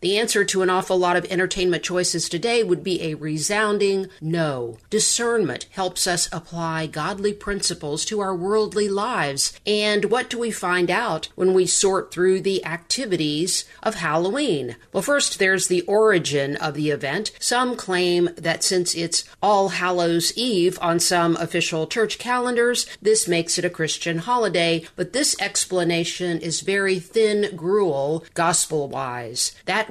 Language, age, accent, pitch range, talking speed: English, 50-69, American, 165-210 Hz, 150 wpm